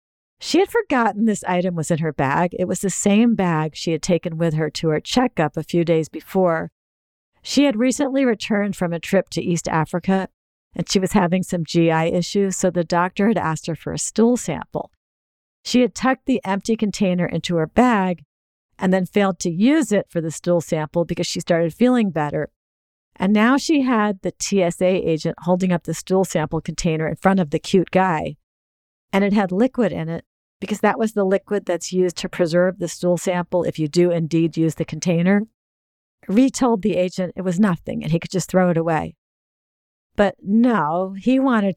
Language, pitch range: English, 165-205 Hz